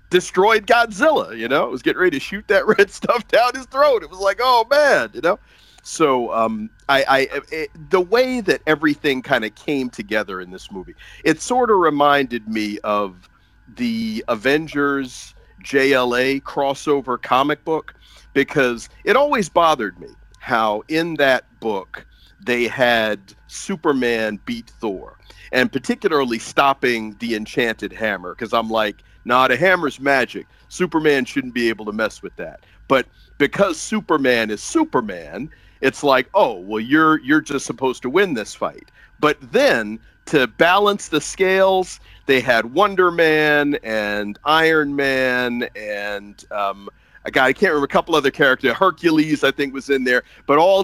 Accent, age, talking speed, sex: American, 40-59, 160 wpm, male